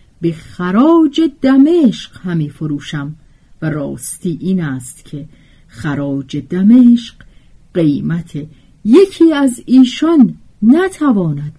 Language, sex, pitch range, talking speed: Persian, female, 150-250 Hz, 90 wpm